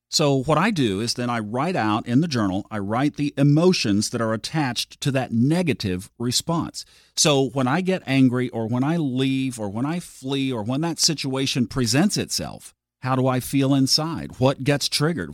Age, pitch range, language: 40-59, 95-135 Hz, English